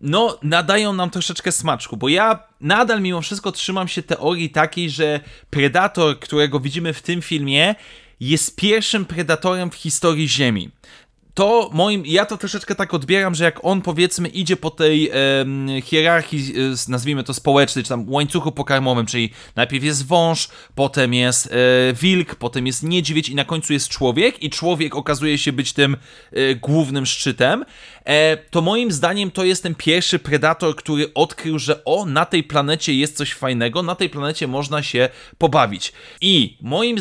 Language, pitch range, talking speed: Polish, 135-175 Hz, 160 wpm